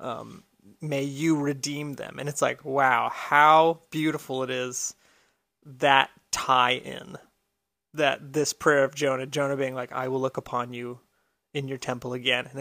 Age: 30-49